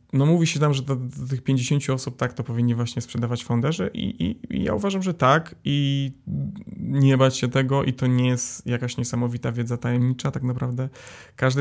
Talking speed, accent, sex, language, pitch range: 195 wpm, native, male, Polish, 120-140 Hz